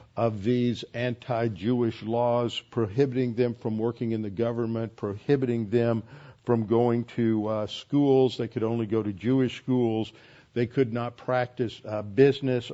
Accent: American